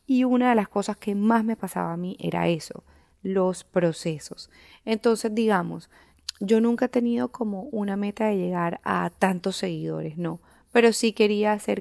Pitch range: 175-215 Hz